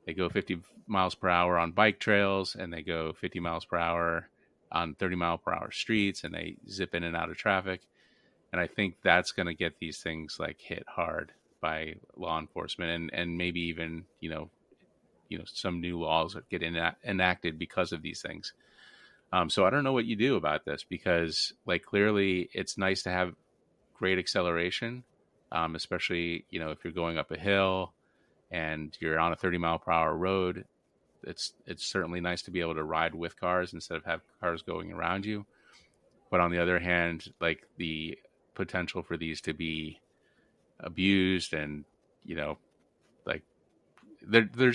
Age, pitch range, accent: 30-49, 80-95 Hz, American